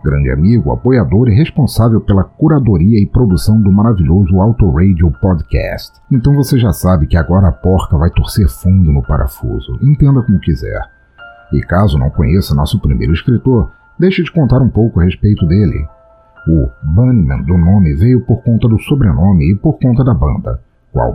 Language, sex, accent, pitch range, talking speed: Portuguese, male, Brazilian, 90-120 Hz, 170 wpm